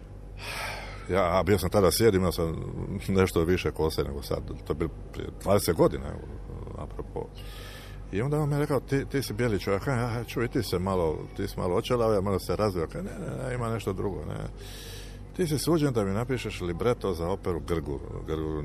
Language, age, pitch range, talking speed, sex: Croatian, 60-79, 90-125 Hz, 190 wpm, male